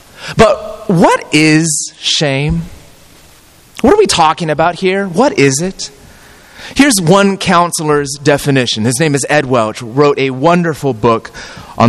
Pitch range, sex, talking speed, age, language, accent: 145-200 Hz, male, 135 wpm, 30-49, English, American